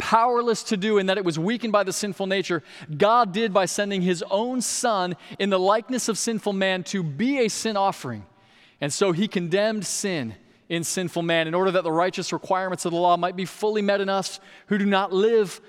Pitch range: 160-210 Hz